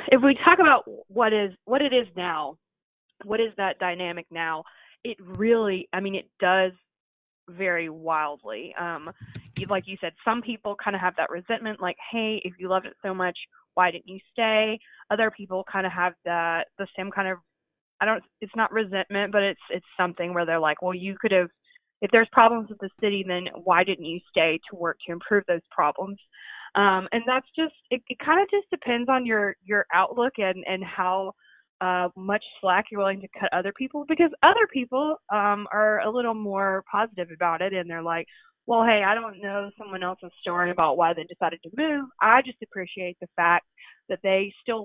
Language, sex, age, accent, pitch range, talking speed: English, female, 20-39, American, 180-220 Hz, 200 wpm